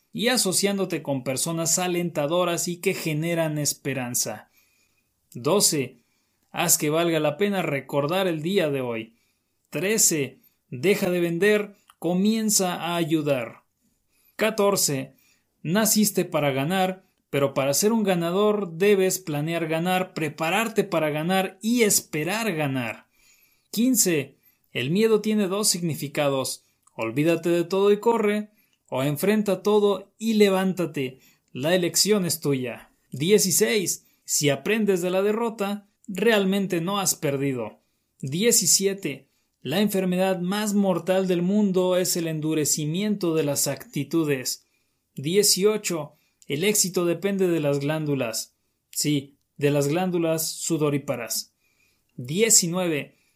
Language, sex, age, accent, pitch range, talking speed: Spanish, male, 30-49, Mexican, 145-200 Hz, 115 wpm